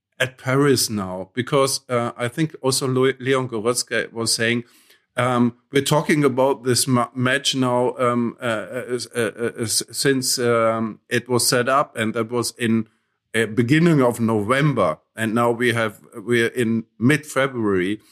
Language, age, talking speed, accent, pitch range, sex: English, 50-69, 155 wpm, German, 110-130 Hz, male